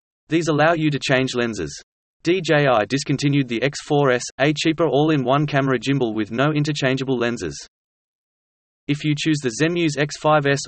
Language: English